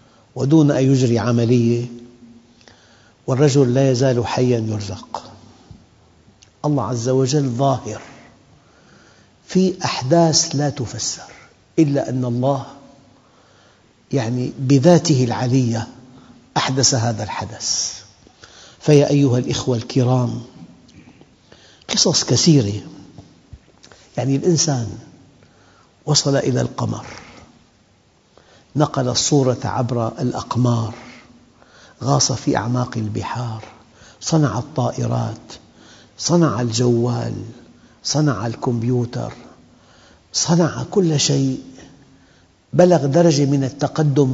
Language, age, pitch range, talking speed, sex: English, 60-79, 115-140 Hz, 80 wpm, male